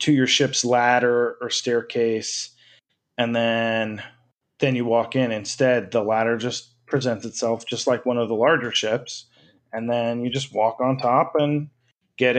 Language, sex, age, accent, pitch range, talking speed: English, male, 30-49, American, 115-140 Hz, 165 wpm